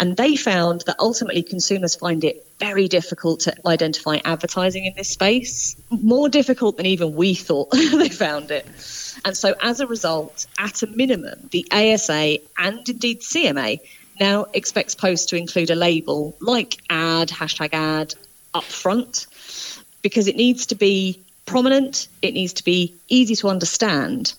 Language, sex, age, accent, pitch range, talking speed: English, female, 30-49, British, 170-225 Hz, 155 wpm